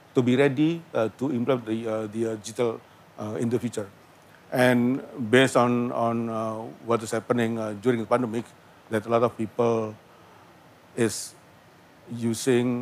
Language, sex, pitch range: English, male, 115-135 Hz